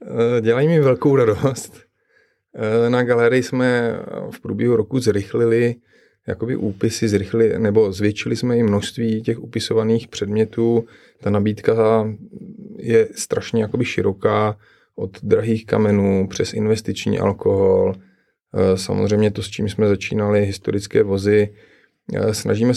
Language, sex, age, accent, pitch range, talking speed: Czech, male, 30-49, native, 105-115 Hz, 115 wpm